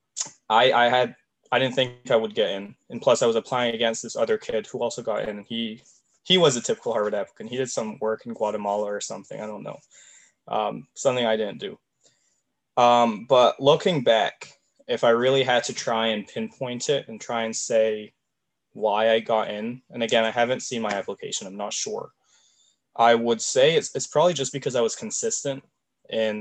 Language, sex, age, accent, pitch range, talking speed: Romanian, male, 20-39, American, 110-120 Hz, 200 wpm